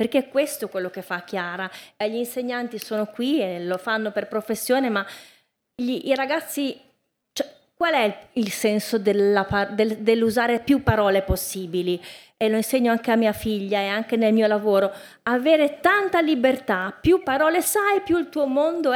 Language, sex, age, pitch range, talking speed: Italian, female, 30-49, 200-270 Hz, 175 wpm